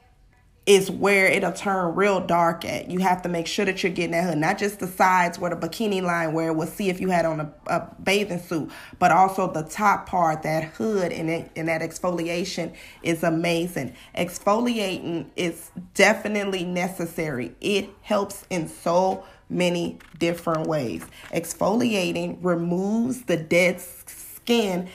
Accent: American